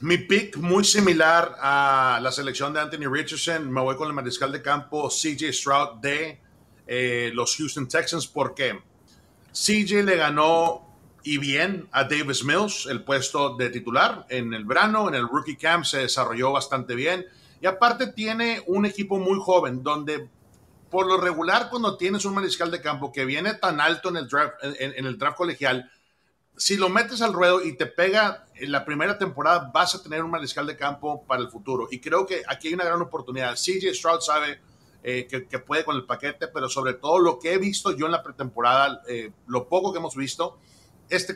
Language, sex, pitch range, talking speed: Spanish, male, 135-175 Hz, 195 wpm